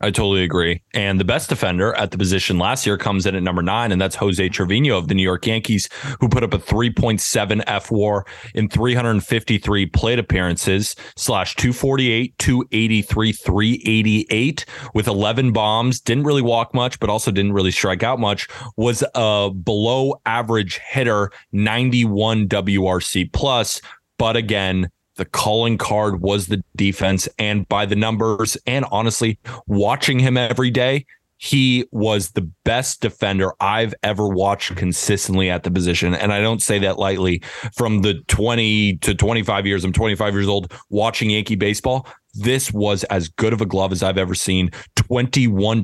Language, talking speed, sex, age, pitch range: English, 160 wpm, male, 20-39, 100-120 Hz